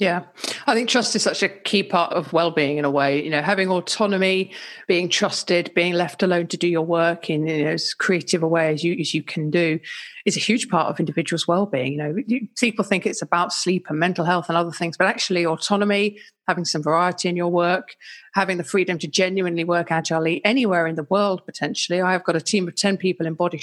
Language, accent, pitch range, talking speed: English, British, 165-200 Hz, 230 wpm